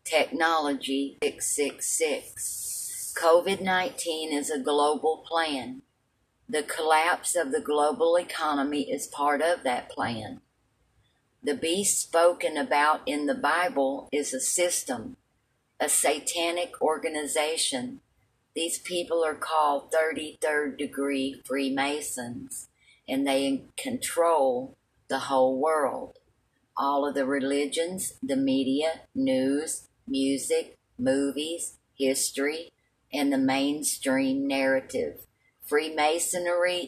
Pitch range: 135-165 Hz